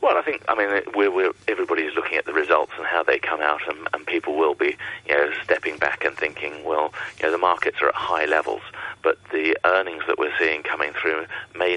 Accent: British